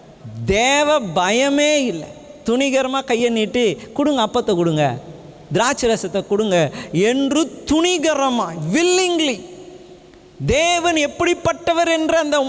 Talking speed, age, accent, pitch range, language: 75 wpm, 50-69, native, 200-300 Hz, Tamil